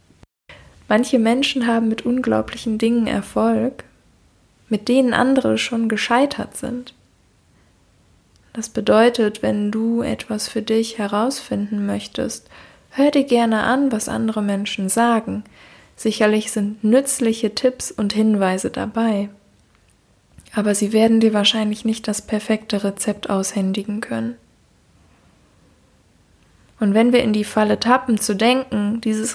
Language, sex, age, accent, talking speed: German, female, 10-29, German, 120 wpm